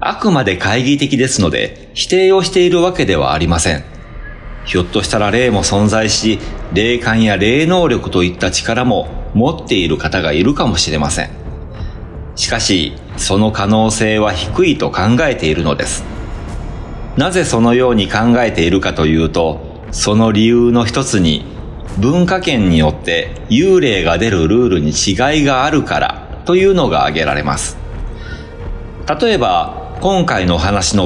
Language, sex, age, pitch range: Japanese, male, 40-59, 80-135 Hz